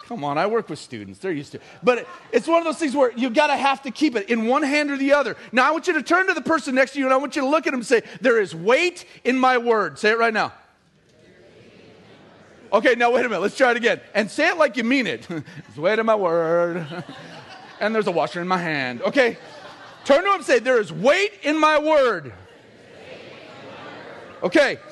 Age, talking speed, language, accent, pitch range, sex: 40-59, 250 wpm, English, American, 210-300 Hz, male